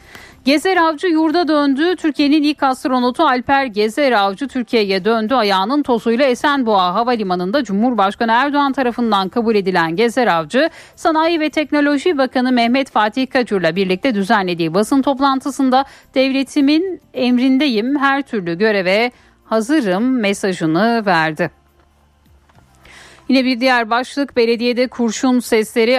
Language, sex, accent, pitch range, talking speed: Turkish, female, native, 205-270 Hz, 115 wpm